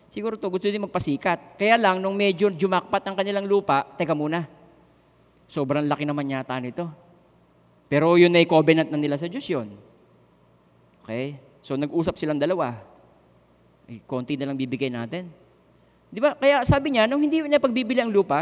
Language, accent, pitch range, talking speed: Filipino, native, 150-215 Hz, 165 wpm